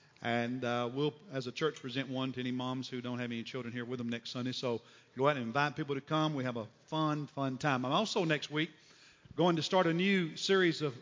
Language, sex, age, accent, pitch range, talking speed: English, male, 50-69, American, 140-185 Hz, 250 wpm